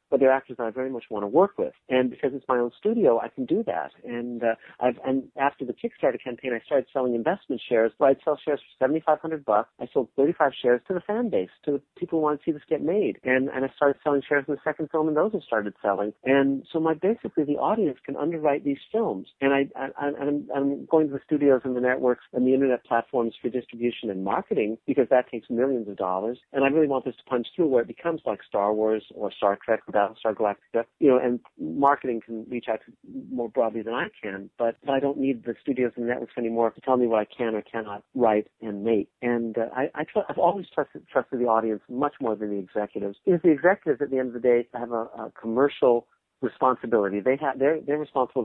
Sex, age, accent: male, 50-69, American